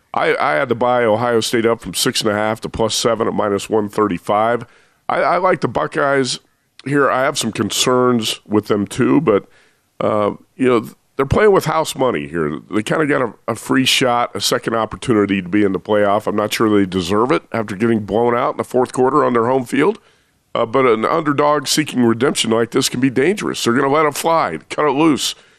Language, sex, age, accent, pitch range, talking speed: English, male, 50-69, American, 105-130 Hz, 220 wpm